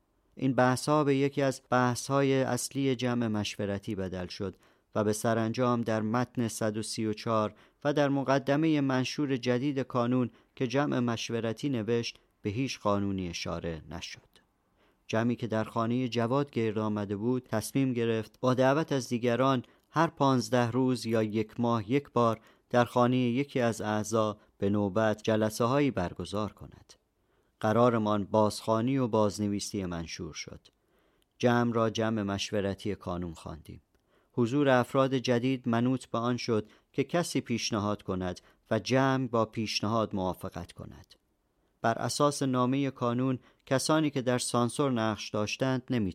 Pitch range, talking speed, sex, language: 105-130 Hz, 135 wpm, male, Persian